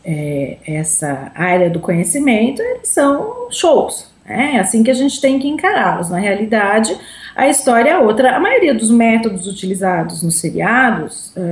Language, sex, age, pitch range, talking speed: Portuguese, female, 30-49, 190-260 Hz, 145 wpm